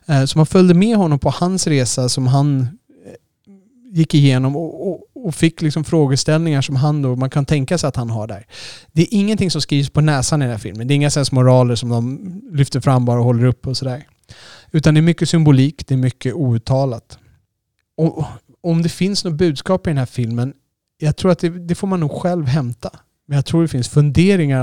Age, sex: 30-49, male